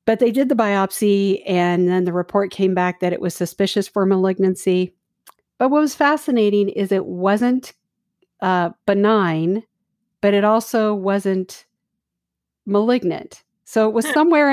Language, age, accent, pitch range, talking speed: English, 50-69, American, 185-215 Hz, 145 wpm